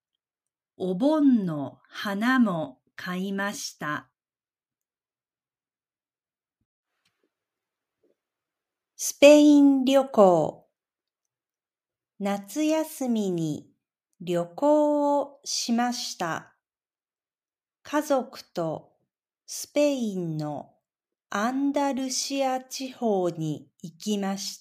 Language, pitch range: Japanese, 180-265 Hz